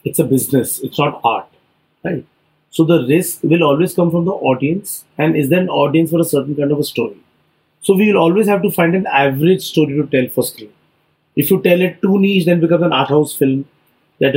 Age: 30-49